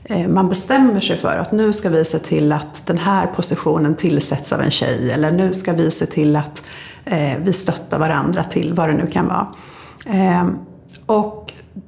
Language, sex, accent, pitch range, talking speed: Swedish, female, native, 170-215 Hz, 175 wpm